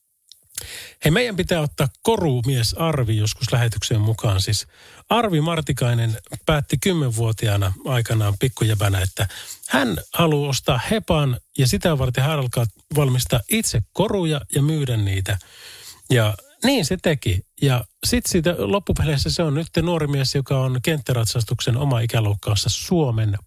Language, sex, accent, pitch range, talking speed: Finnish, male, native, 110-150 Hz, 135 wpm